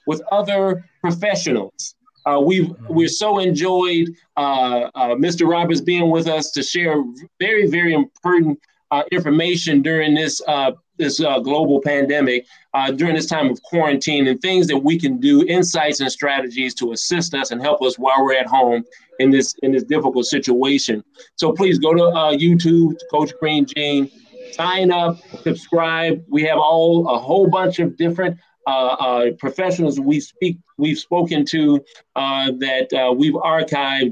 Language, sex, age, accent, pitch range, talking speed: English, male, 40-59, American, 140-170 Hz, 165 wpm